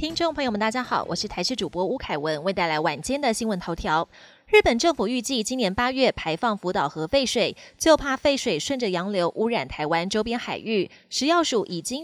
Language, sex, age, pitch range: Chinese, female, 20-39, 190-265 Hz